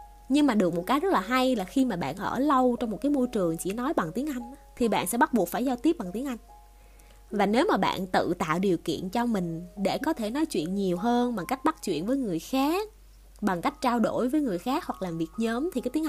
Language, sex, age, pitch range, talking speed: Vietnamese, female, 20-39, 190-275 Hz, 270 wpm